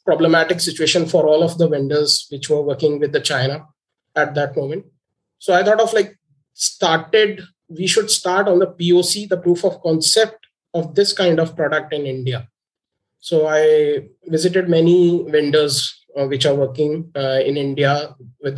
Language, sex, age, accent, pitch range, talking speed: English, male, 20-39, Indian, 140-175 Hz, 160 wpm